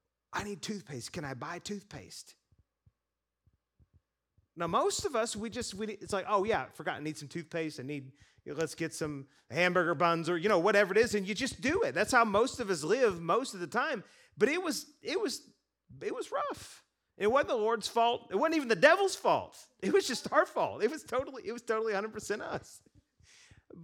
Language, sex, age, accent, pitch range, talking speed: English, male, 30-49, American, 135-220 Hz, 225 wpm